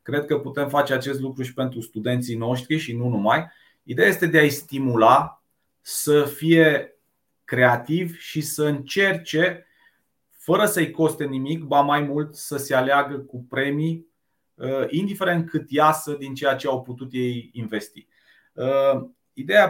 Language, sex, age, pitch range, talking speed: Romanian, male, 30-49, 120-155 Hz, 145 wpm